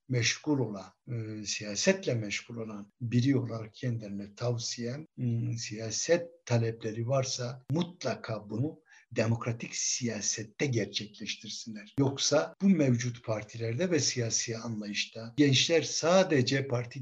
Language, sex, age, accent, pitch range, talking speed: Turkish, male, 60-79, native, 120-175 Hz, 100 wpm